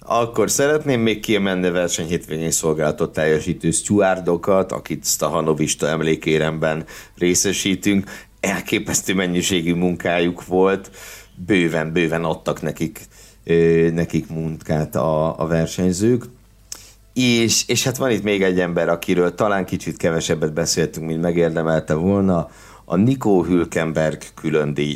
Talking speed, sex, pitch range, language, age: 115 wpm, male, 85-110 Hz, Hungarian, 60-79